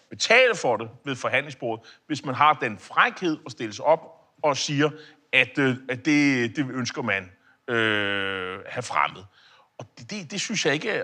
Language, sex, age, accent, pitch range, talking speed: Danish, male, 30-49, native, 125-175 Hz, 185 wpm